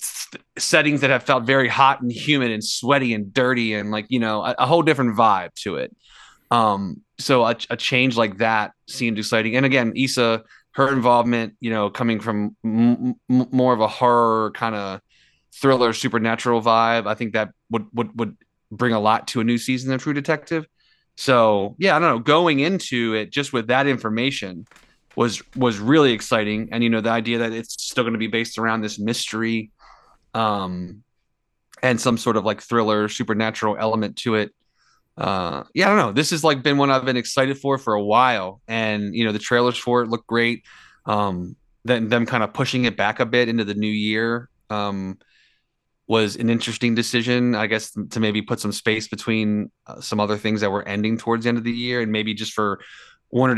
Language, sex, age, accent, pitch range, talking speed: English, male, 20-39, American, 110-125 Hz, 205 wpm